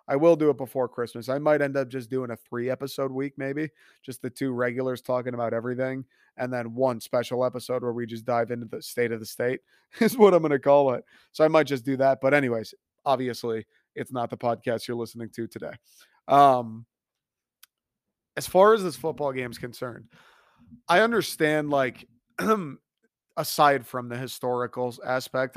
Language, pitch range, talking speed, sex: English, 120-155 Hz, 185 wpm, male